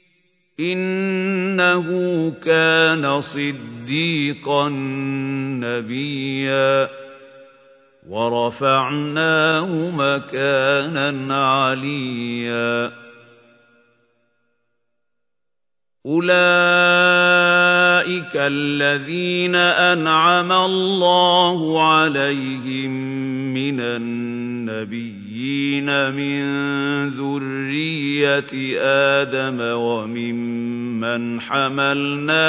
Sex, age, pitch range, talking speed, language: male, 50-69, 120-145 Hz, 35 wpm, Arabic